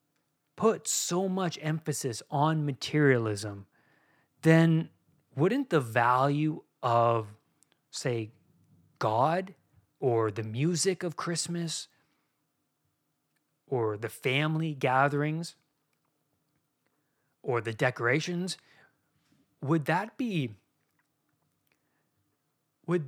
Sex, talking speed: male, 75 wpm